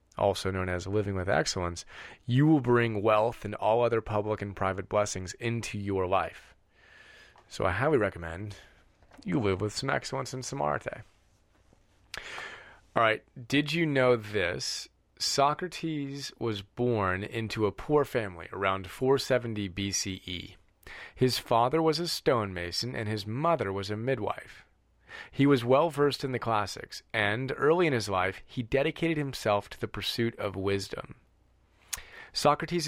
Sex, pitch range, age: male, 100-130 Hz, 30-49